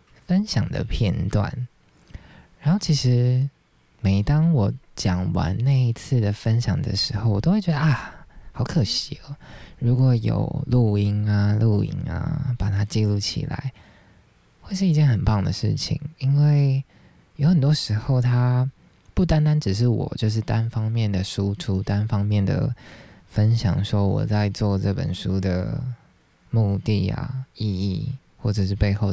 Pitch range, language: 100-130 Hz, Chinese